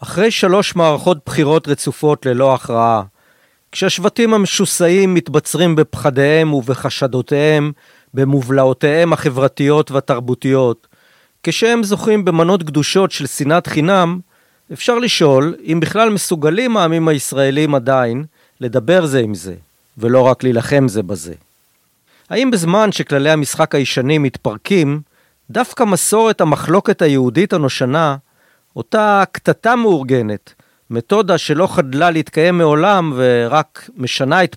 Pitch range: 130-180 Hz